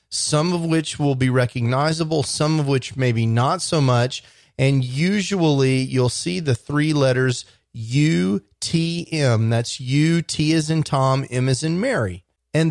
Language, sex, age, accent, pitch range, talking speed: English, male, 30-49, American, 120-150 Hz, 145 wpm